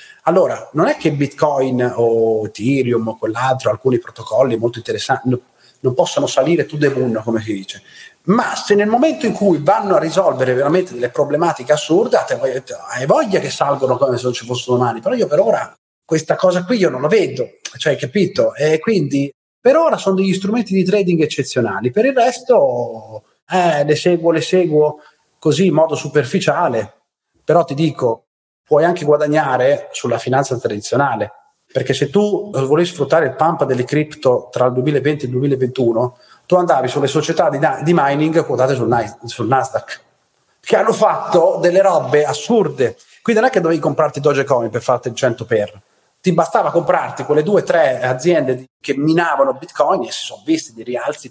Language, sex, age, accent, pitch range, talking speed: Italian, male, 30-49, native, 130-185 Hz, 180 wpm